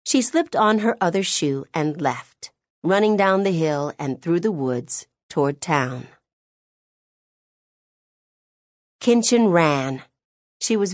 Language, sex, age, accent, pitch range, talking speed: English, female, 40-59, American, 155-220 Hz, 120 wpm